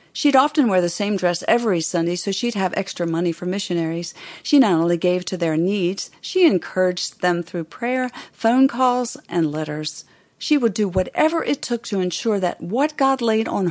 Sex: female